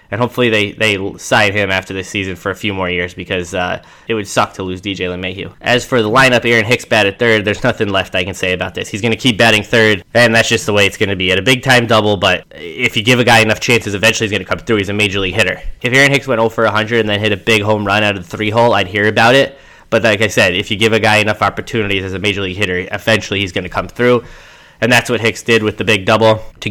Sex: male